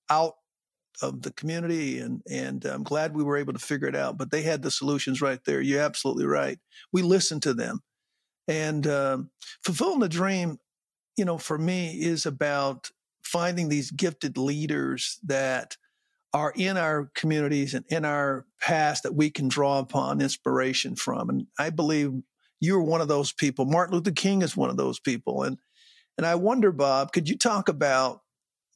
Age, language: 50-69, English